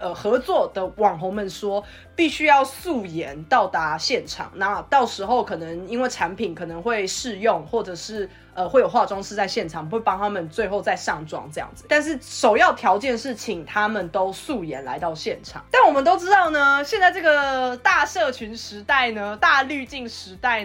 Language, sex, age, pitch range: Chinese, female, 20-39, 210-330 Hz